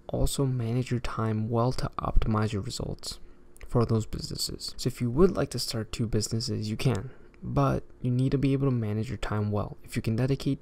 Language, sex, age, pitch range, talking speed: English, male, 20-39, 110-130 Hz, 215 wpm